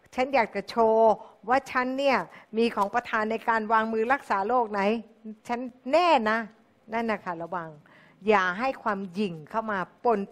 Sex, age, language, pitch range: female, 60-79, Thai, 180-230 Hz